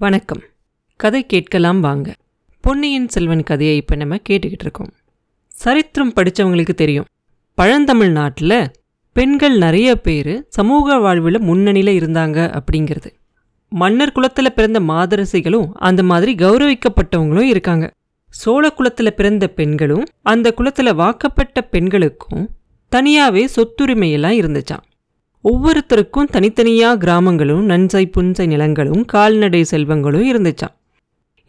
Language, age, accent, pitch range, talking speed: Tamil, 30-49, native, 170-250 Hz, 95 wpm